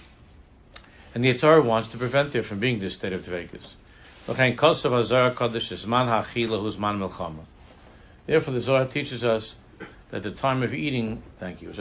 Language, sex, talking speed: English, male, 145 wpm